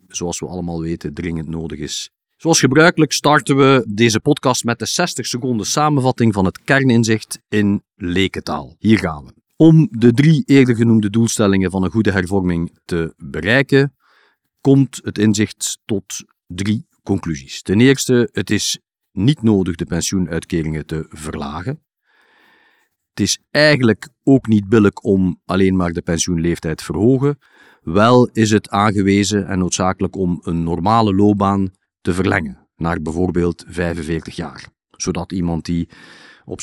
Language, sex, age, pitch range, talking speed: Dutch, male, 50-69, 85-125 Hz, 145 wpm